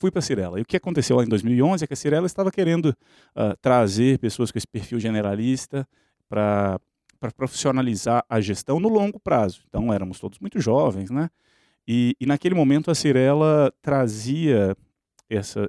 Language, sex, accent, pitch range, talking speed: Portuguese, male, Brazilian, 110-140 Hz, 170 wpm